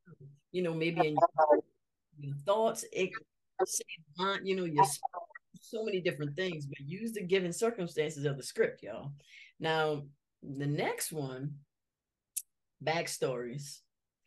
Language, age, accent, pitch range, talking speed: English, 30-49, American, 155-200 Hz, 120 wpm